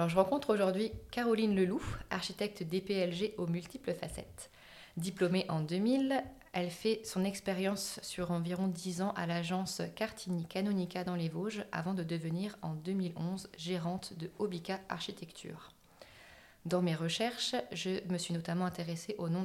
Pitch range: 170-195 Hz